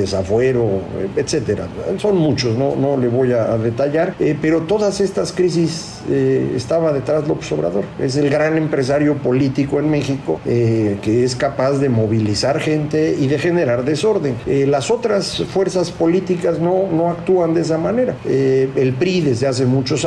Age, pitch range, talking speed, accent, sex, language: 50-69, 125-170 Hz, 165 wpm, Mexican, male, Spanish